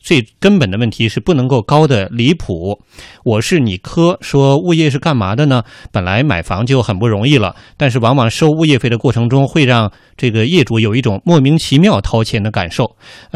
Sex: male